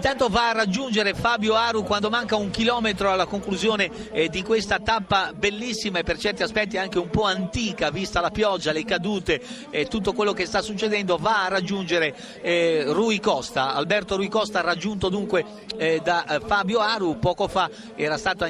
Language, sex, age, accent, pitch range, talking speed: Italian, male, 50-69, native, 190-225 Hz, 180 wpm